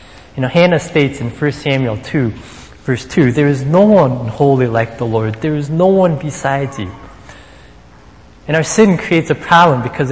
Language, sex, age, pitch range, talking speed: English, male, 20-39, 110-155 Hz, 185 wpm